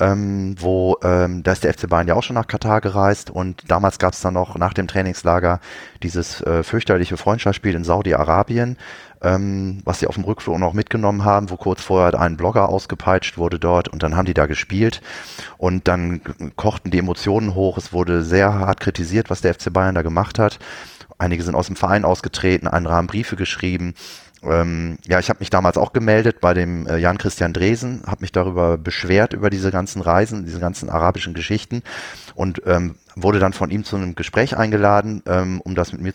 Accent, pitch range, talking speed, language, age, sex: German, 85-105 Hz, 195 wpm, German, 30-49, male